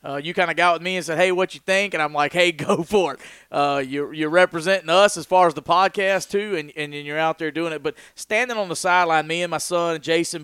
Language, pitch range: English, 155-185 Hz